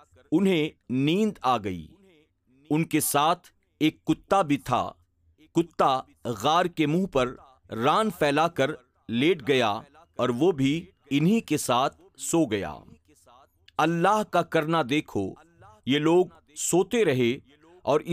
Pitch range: 125-170 Hz